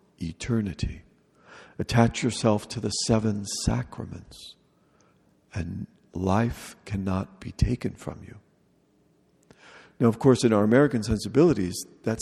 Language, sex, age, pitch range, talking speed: English, male, 50-69, 100-120 Hz, 110 wpm